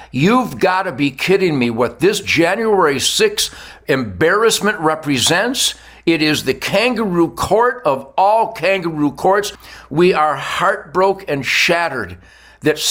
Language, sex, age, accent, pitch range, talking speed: English, male, 60-79, American, 165-230 Hz, 125 wpm